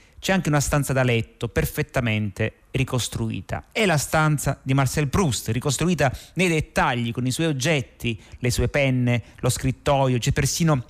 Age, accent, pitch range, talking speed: 30-49, native, 115-145 Hz, 155 wpm